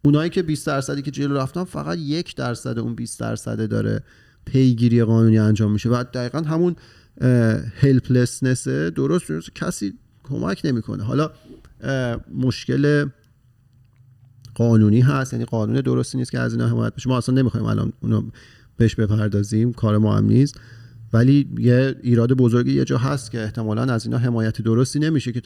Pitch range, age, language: 110-130 Hz, 40-59, Persian